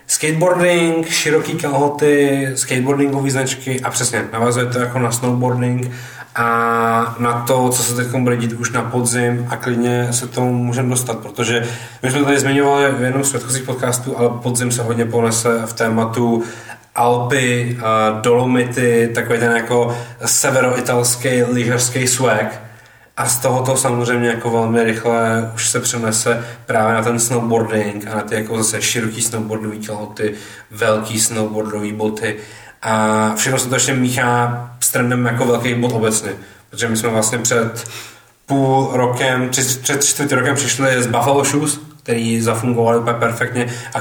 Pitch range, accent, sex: 115-125 Hz, native, male